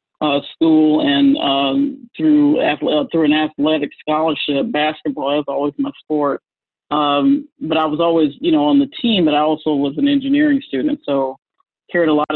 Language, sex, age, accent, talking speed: English, male, 40-59, American, 180 wpm